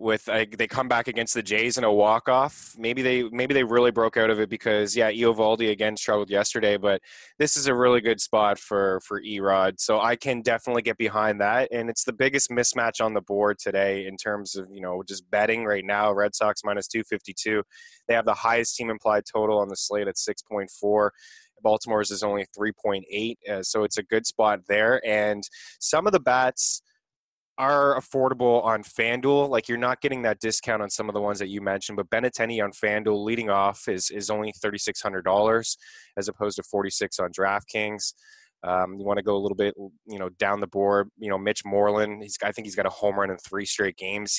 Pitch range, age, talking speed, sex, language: 100-115 Hz, 20-39, 215 wpm, male, English